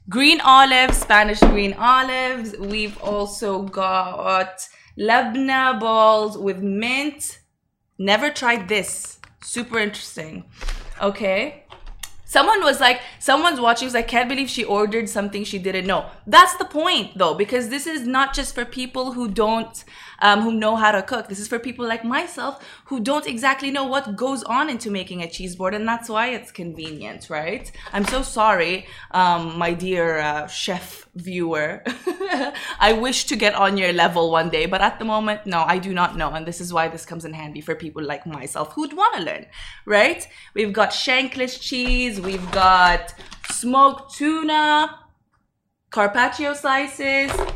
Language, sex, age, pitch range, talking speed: Arabic, female, 20-39, 190-260 Hz, 165 wpm